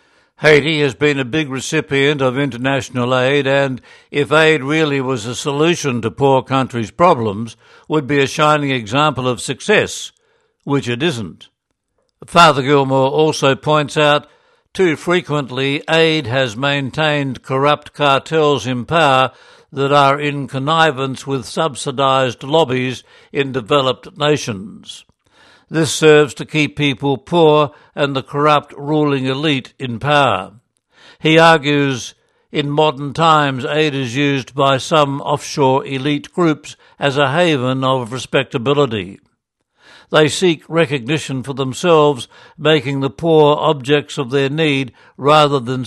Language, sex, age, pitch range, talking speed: English, male, 60-79, 135-150 Hz, 130 wpm